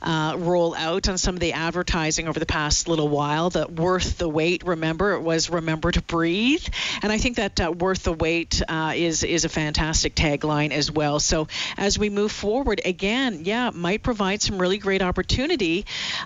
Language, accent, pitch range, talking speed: English, American, 165-195 Hz, 190 wpm